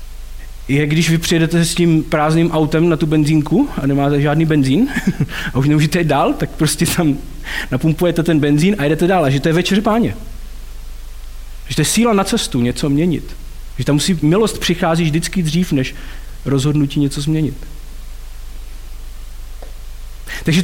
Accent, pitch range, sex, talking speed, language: native, 135-185 Hz, male, 165 wpm, Czech